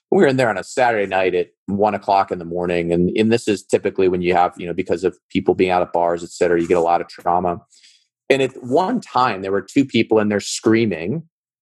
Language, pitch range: English, 95-120 Hz